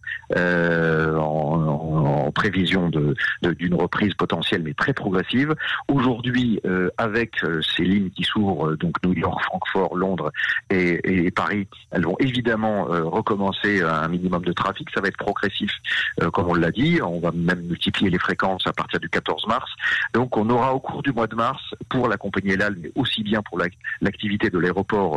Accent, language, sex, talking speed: French, French, male, 195 wpm